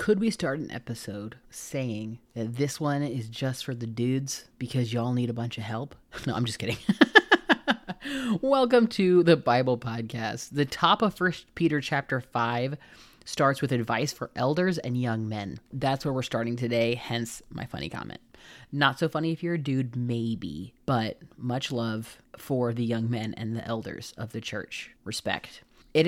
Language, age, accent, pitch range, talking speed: English, 30-49, American, 115-155 Hz, 175 wpm